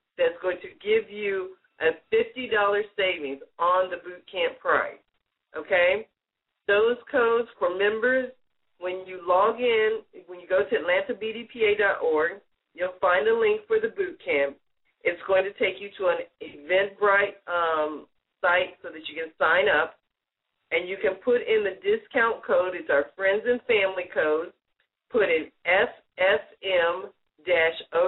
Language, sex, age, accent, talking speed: English, female, 40-59, American, 145 wpm